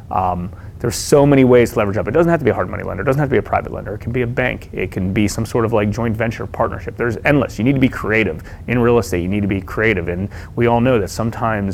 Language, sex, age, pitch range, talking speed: English, male, 30-49, 95-115 Hz, 310 wpm